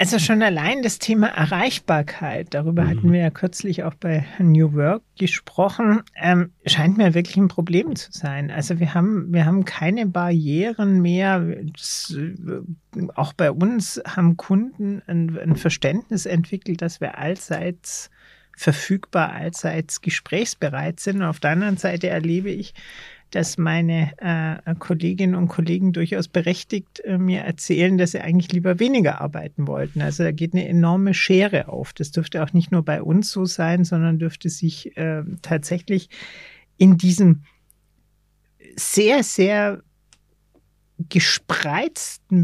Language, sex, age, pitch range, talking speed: German, male, 40-59, 165-190 Hz, 135 wpm